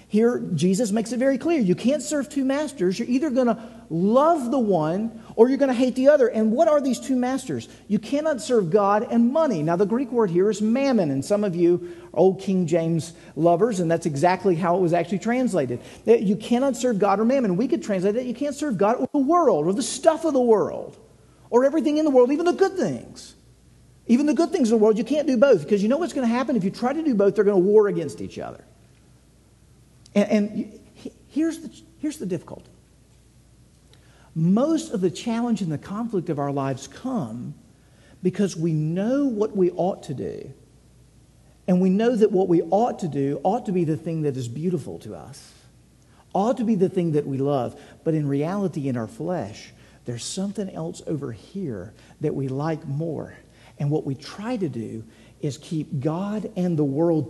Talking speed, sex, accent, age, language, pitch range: 215 wpm, male, American, 50-69, English, 160-245 Hz